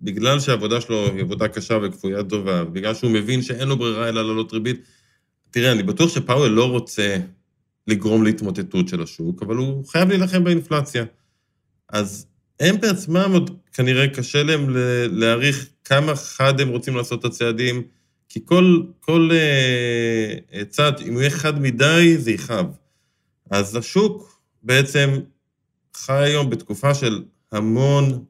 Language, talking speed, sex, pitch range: Hebrew, 145 wpm, male, 115-140 Hz